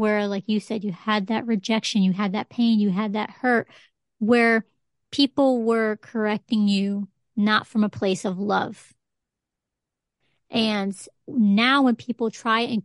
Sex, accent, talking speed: female, American, 155 wpm